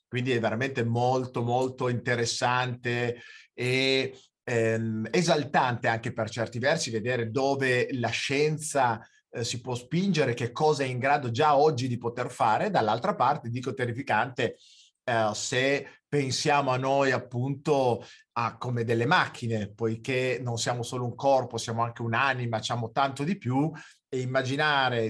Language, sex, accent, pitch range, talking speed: Italian, male, native, 115-140 Hz, 140 wpm